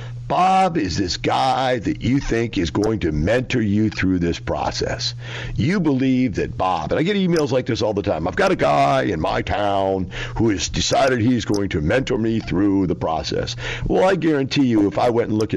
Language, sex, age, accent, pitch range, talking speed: English, male, 50-69, American, 100-125 Hz, 210 wpm